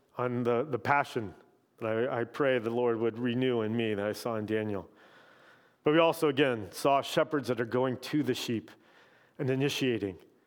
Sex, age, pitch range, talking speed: male, 40-59, 120-145 Hz, 190 wpm